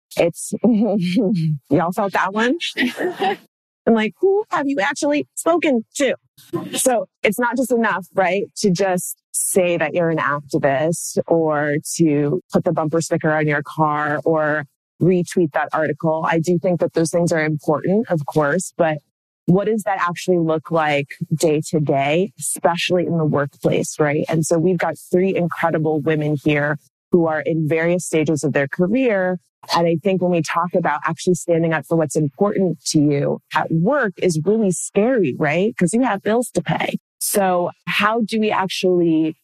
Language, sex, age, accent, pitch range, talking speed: English, female, 30-49, American, 155-190 Hz, 170 wpm